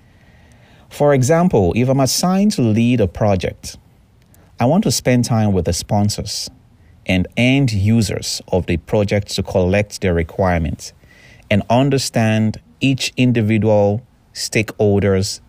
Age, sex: 30-49, male